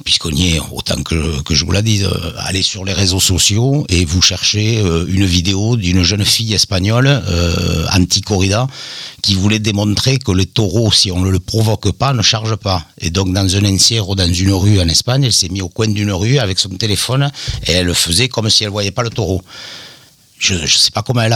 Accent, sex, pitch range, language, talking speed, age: French, male, 95-115 Hz, French, 230 wpm, 60-79